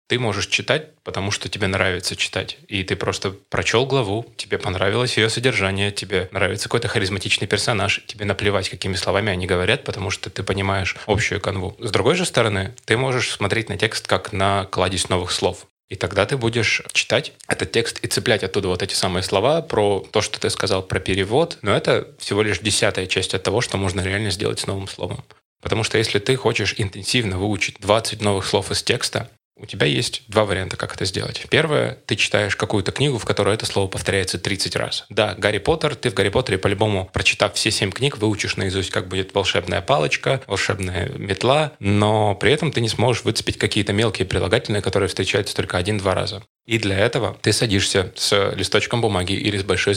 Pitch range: 95-110 Hz